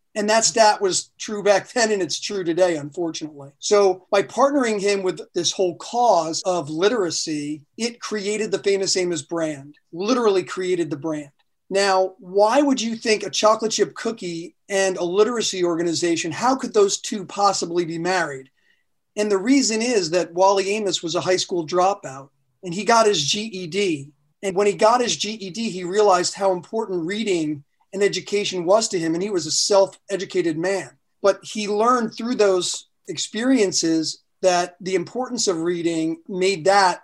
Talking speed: 165 wpm